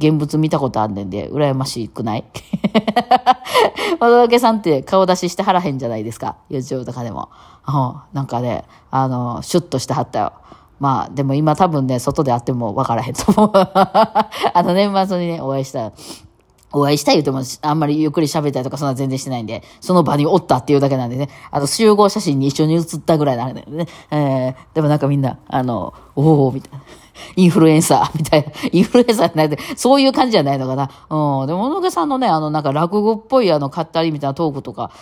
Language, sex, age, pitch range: Japanese, female, 20-39, 135-195 Hz